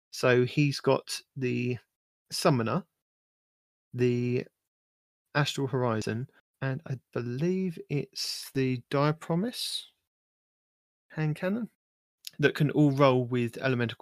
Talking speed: 100 wpm